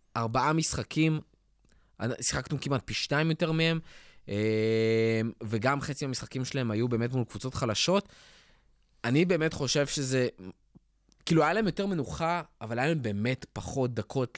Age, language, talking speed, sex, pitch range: 20-39, Hebrew, 135 wpm, male, 115-150 Hz